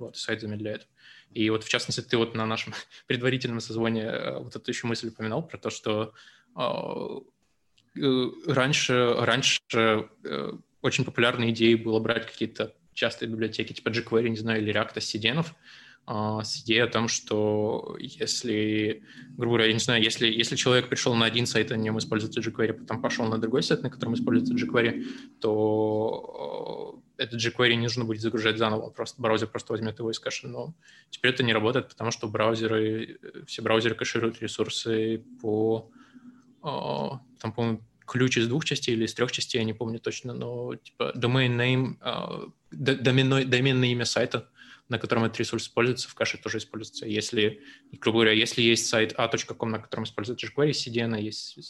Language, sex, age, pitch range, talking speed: Ukrainian, male, 20-39, 110-125 Hz, 170 wpm